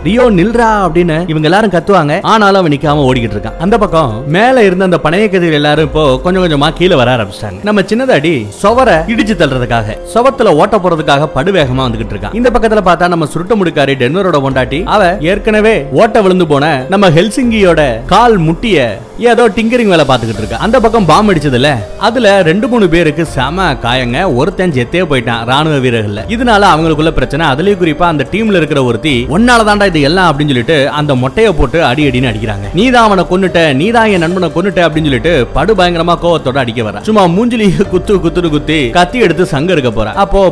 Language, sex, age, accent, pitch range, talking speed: Tamil, male, 30-49, native, 140-200 Hz, 100 wpm